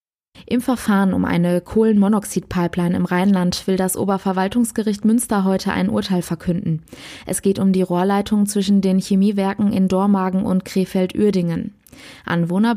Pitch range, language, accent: 185-210 Hz, German, German